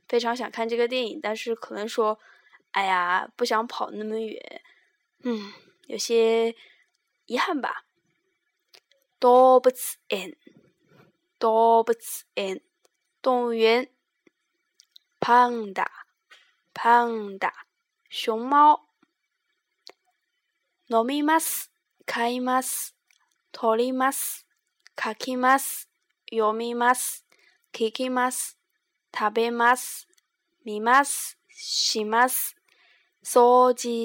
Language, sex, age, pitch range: Chinese, female, 10-29, 225-270 Hz